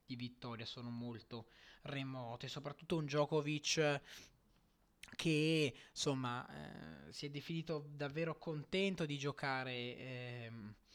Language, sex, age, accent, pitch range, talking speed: Italian, male, 20-39, native, 110-150 Hz, 100 wpm